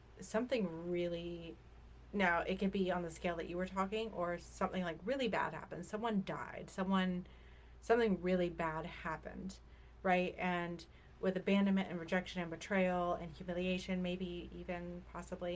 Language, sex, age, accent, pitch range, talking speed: English, female, 30-49, American, 165-185 Hz, 150 wpm